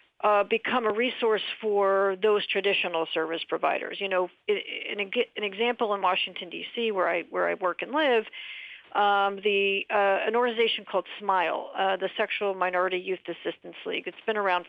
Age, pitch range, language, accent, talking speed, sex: 50-69, 190-225 Hz, English, American, 170 wpm, female